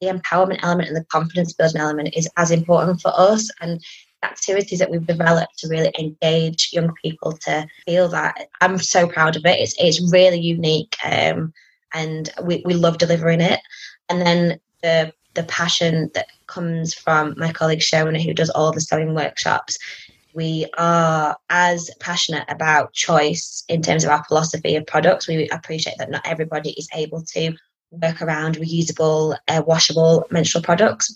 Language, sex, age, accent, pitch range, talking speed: English, female, 20-39, British, 160-170 Hz, 170 wpm